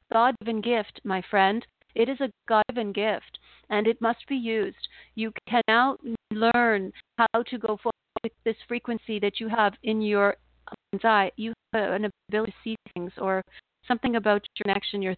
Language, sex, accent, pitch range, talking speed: English, female, American, 200-235 Hz, 180 wpm